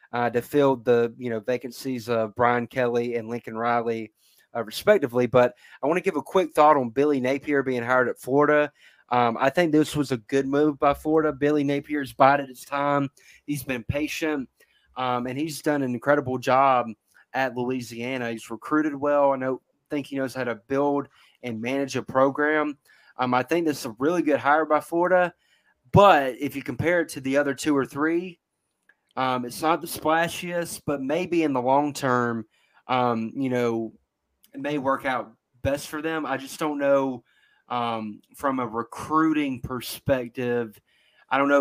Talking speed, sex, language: 185 wpm, male, English